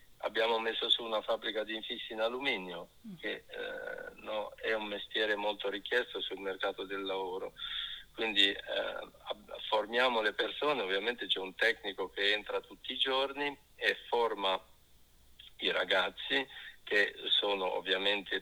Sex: male